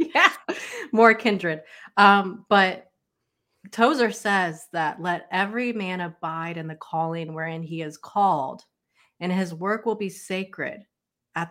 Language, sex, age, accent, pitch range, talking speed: English, female, 30-49, American, 155-185 Hz, 135 wpm